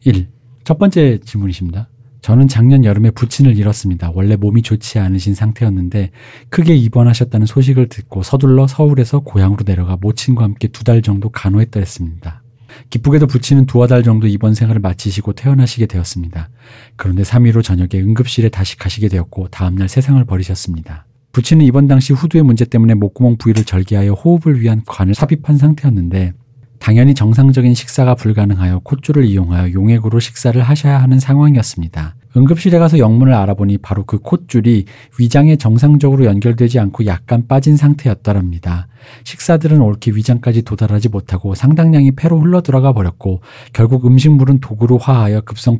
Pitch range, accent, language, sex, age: 100-130 Hz, native, Korean, male, 40-59